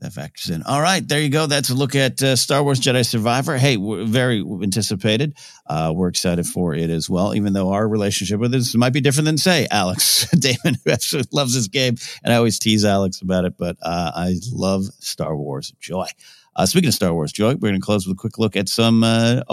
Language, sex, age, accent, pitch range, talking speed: English, male, 50-69, American, 100-135 Hz, 235 wpm